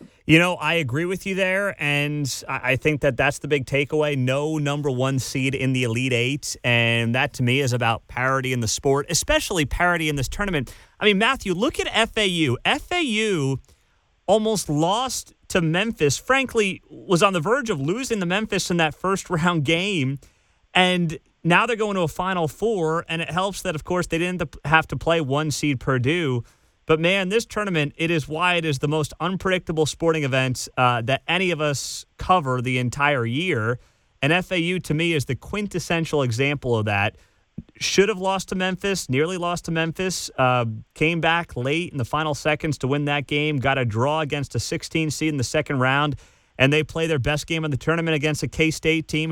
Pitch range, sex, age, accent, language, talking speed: 135-175 Hz, male, 30-49, American, English, 195 wpm